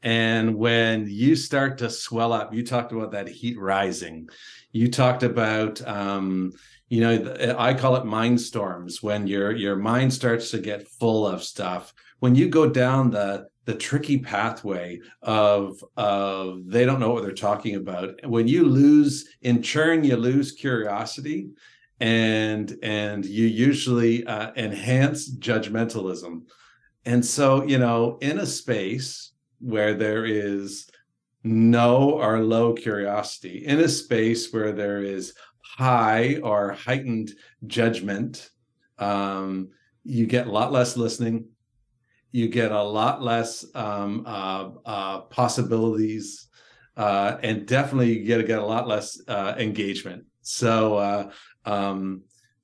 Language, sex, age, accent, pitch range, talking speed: English, male, 50-69, American, 105-125 Hz, 140 wpm